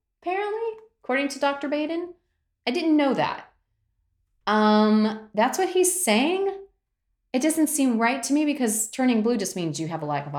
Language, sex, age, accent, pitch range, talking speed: English, female, 30-49, American, 160-235 Hz, 175 wpm